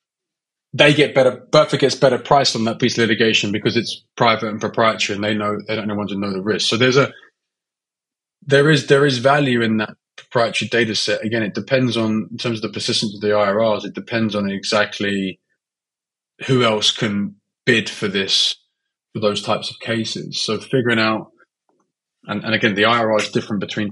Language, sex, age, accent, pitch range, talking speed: English, male, 20-39, British, 105-130 Hz, 195 wpm